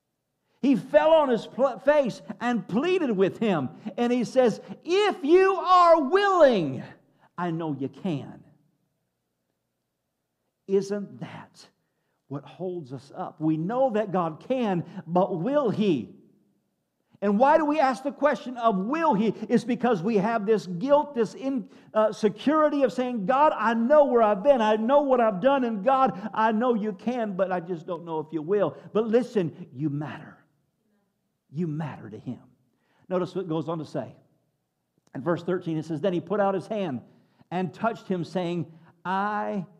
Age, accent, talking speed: 50-69, American, 165 wpm